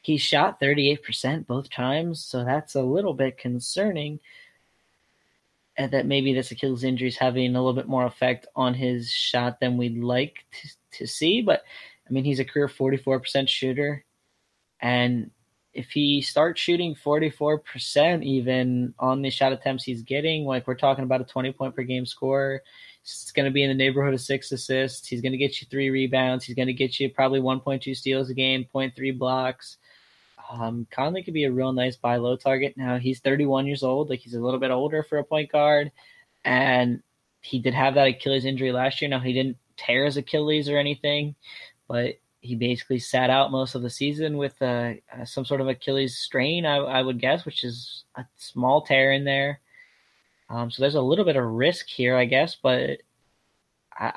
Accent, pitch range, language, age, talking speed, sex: American, 125-140 Hz, English, 20-39, 190 wpm, male